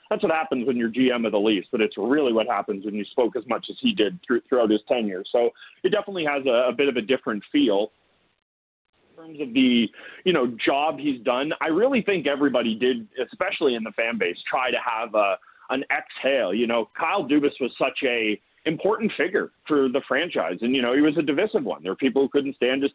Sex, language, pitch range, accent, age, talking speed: male, English, 120-170 Hz, American, 30-49, 235 wpm